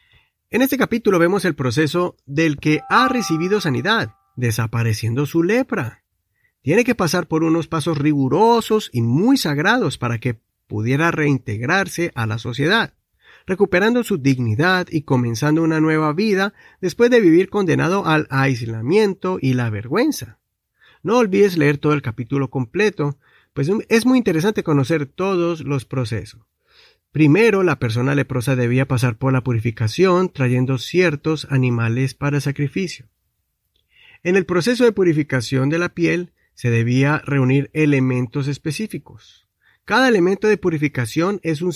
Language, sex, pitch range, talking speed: Spanish, male, 130-185 Hz, 140 wpm